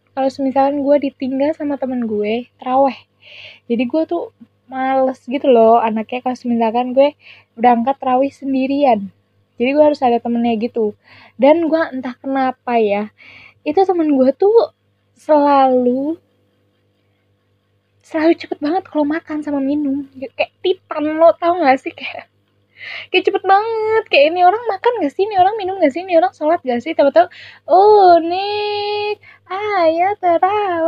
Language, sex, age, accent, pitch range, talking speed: Indonesian, female, 10-29, native, 245-320 Hz, 150 wpm